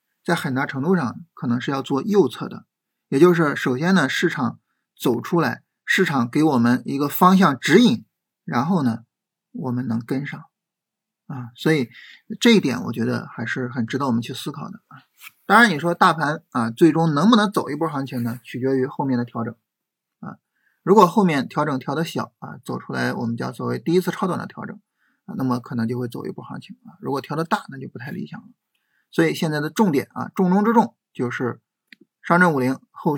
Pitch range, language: 125-185 Hz, Chinese